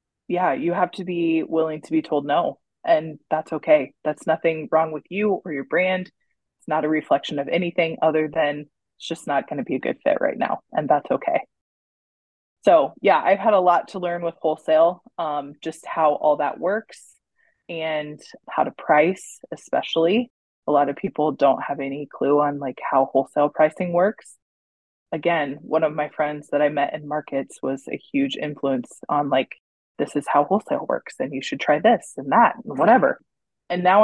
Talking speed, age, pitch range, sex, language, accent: 195 wpm, 20-39, 145-175 Hz, female, English, American